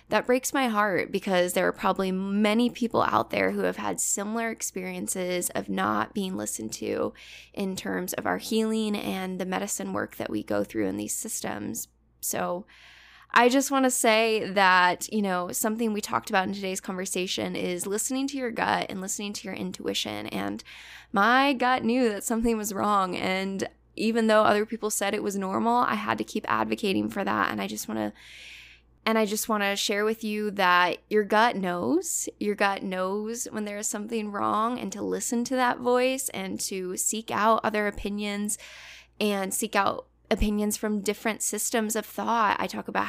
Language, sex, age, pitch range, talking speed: English, female, 10-29, 190-225 Hz, 190 wpm